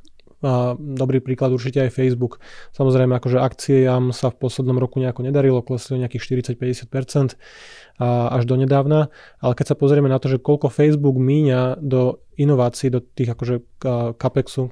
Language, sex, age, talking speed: Slovak, male, 20-39, 145 wpm